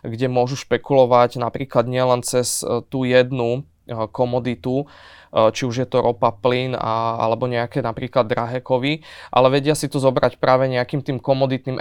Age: 20-39